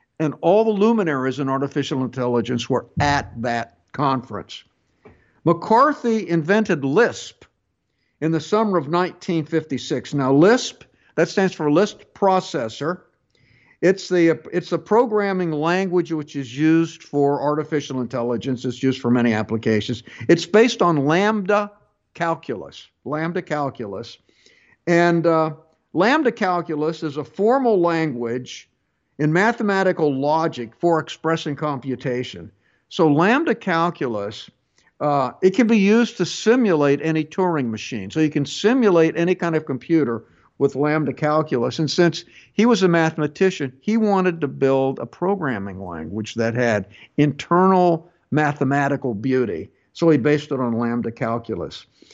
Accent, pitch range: American, 130-180 Hz